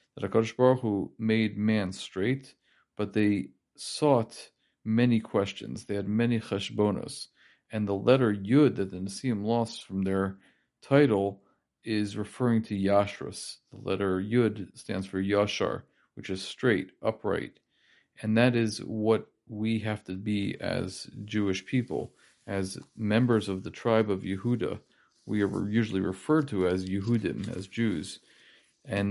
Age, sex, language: 40-59, male, English